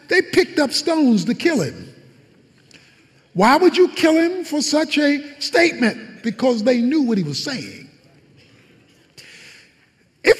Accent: American